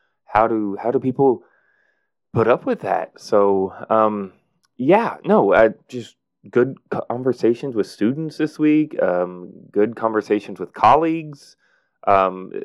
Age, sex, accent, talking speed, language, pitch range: 20-39, male, American, 130 wpm, English, 95-120 Hz